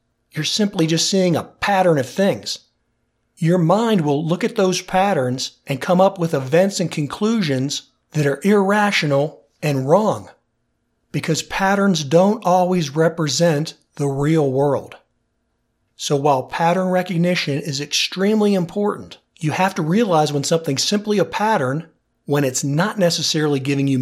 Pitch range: 145-195 Hz